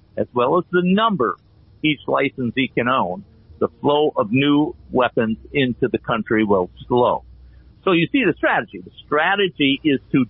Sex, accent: male, American